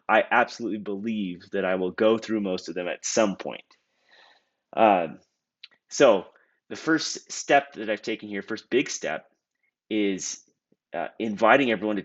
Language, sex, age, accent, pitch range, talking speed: English, male, 30-49, American, 95-115 Hz, 155 wpm